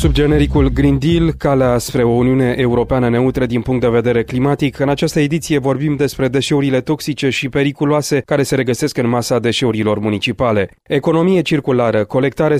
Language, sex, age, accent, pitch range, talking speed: Romanian, male, 30-49, native, 130-150 Hz, 160 wpm